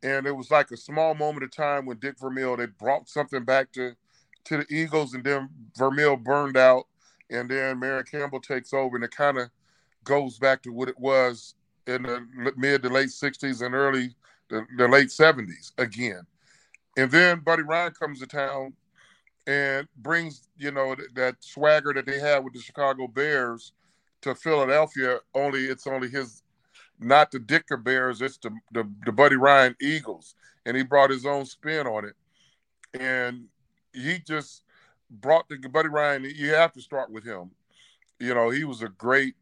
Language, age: English, 40-59